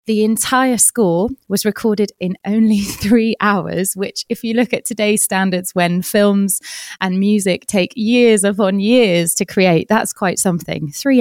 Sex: female